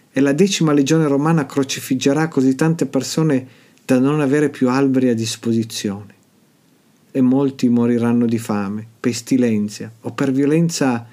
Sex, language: male, Italian